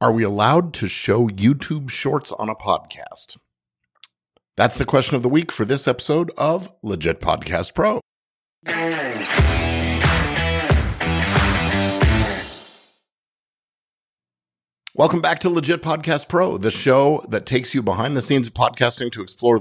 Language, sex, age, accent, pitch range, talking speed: English, male, 50-69, American, 95-135 Hz, 125 wpm